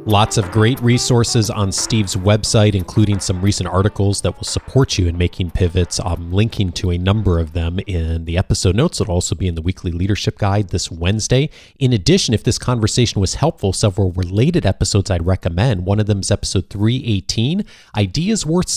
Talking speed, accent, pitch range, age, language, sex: 190 wpm, American, 90-110 Hz, 30-49, English, male